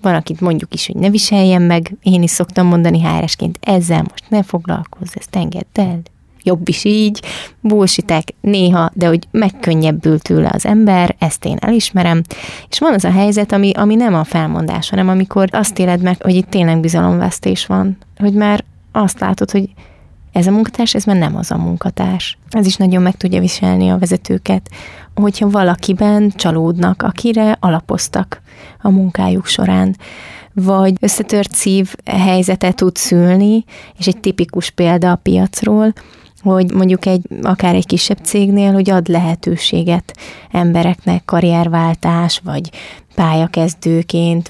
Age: 20-39